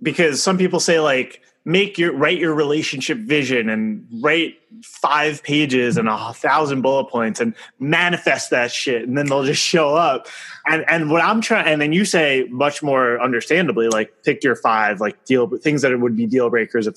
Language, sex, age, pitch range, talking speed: English, male, 20-39, 120-155 Hz, 200 wpm